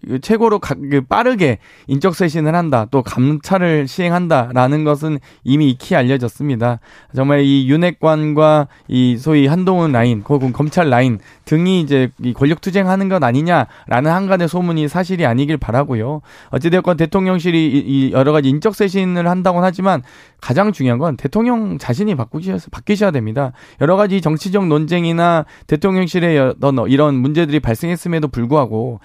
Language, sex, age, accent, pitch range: Korean, male, 20-39, native, 140-185 Hz